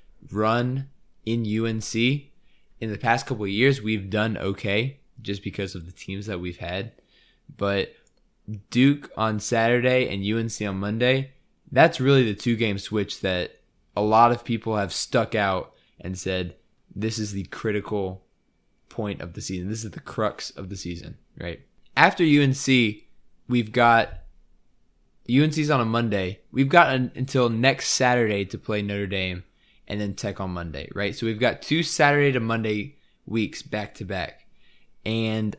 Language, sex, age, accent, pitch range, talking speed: English, male, 20-39, American, 100-120 Hz, 160 wpm